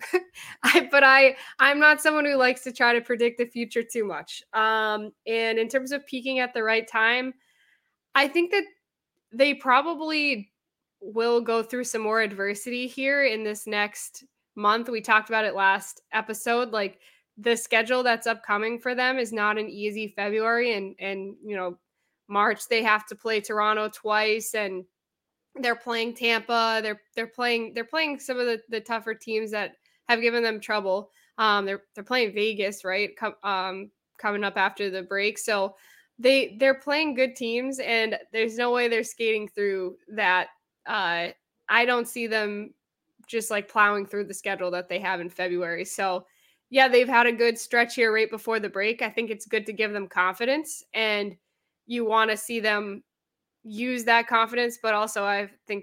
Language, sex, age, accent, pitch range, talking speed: English, female, 10-29, American, 205-240 Hz, 180 wpm